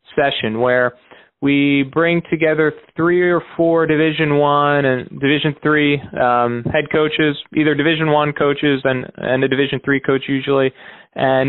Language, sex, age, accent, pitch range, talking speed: English, male, 30-49, American, 130-150 Hz, 145 wpm